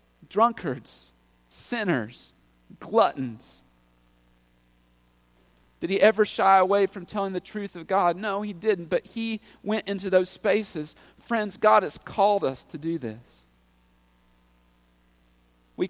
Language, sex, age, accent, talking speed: English, male, 40-59, American, 120 wpm